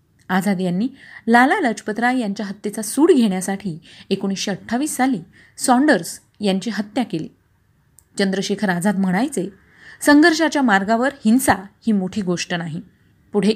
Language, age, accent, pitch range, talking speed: Marathi, 30-49, native, 185-235 Hz, 115 wpm